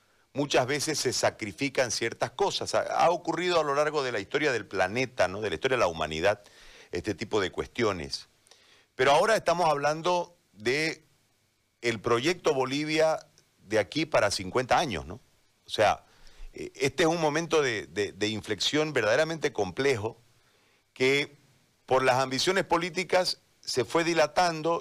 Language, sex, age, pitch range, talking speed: Spanish, male, 50-69, 115-165 Hz, 140 wpm